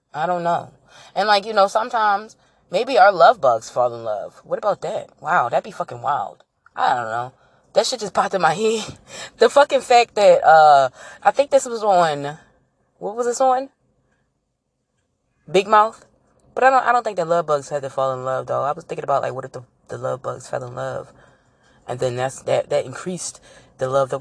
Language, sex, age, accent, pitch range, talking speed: English, female, 20-39, American, 140-205 Hz, 215 wpm